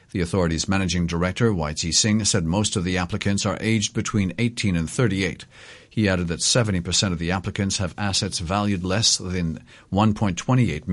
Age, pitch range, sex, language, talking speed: 50-69, 90-110 Hz, male, English, 165 wpm